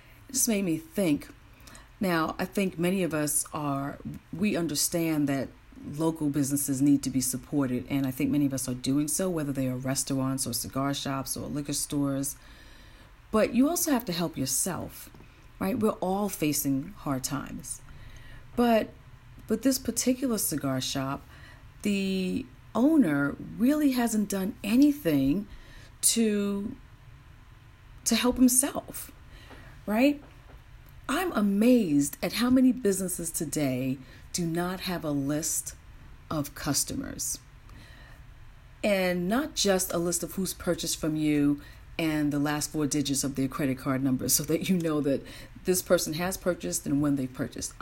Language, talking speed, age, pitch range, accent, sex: English, 145 wpm, 40-59, 140-200 Hz, American, female